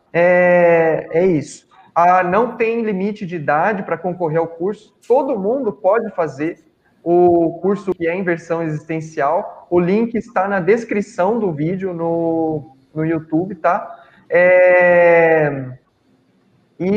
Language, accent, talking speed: Portuguese, Brazilian, 125 wpm